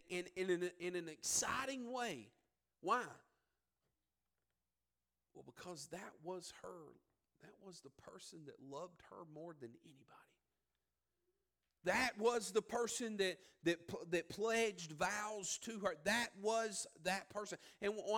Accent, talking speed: American, 135 wpm